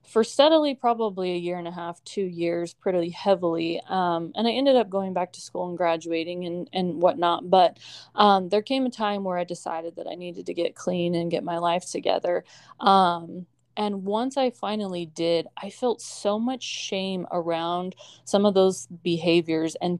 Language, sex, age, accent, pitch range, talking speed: English, female, 20-39, American, 170-205 Hz, 190 wpm